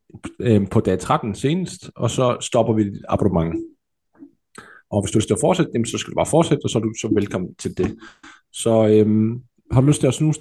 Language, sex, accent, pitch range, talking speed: Danish, male, native, 105-130 Hz, 220 wpm